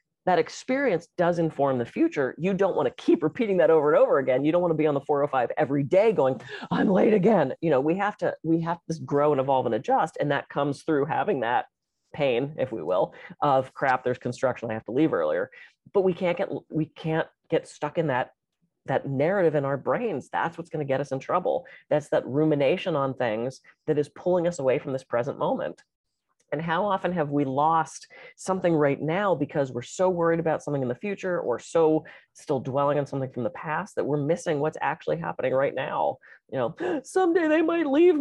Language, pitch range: English, 140-185 Hz